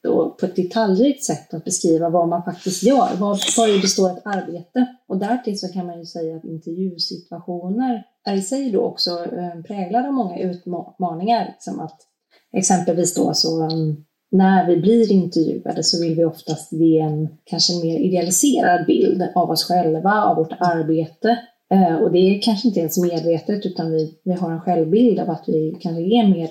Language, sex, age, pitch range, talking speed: Swedish, female, 30-49, 165-205 Hz, 180 wpm